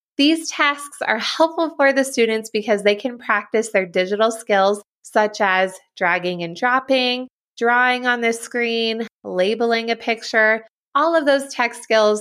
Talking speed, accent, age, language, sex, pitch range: 150 wpm, American, 20-39, English, female, 195-250 Hz